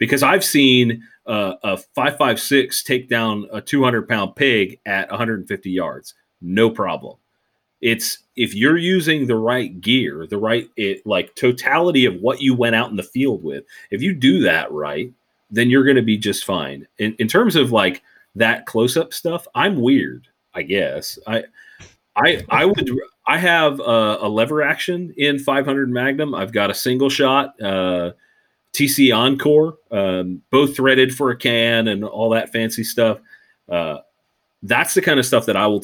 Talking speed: 175 wpm